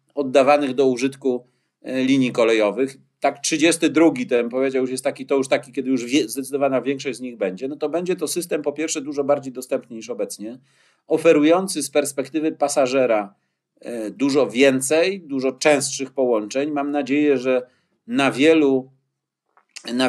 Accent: native